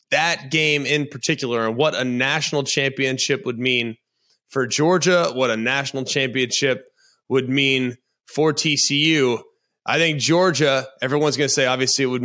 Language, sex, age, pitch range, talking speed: English, male, 20-39, 125-150 Hz, 150 wpm